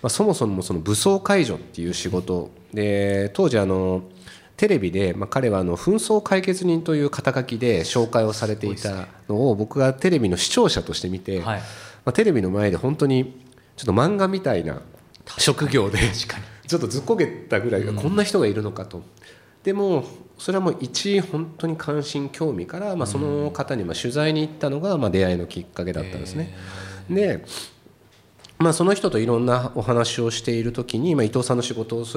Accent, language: native, Japanese